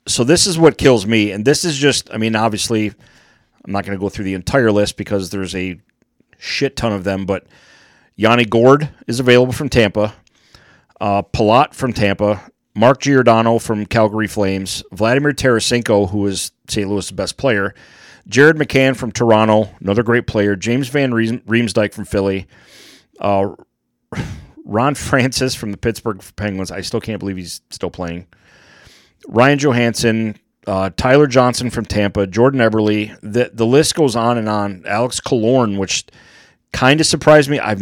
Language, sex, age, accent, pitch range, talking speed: English, male, 30-49, American, 100-120 Hz, 165 wpm